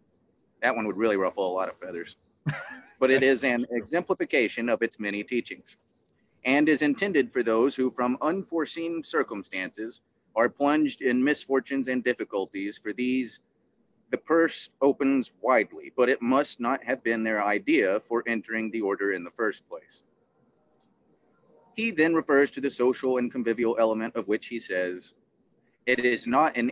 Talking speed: 160 wpm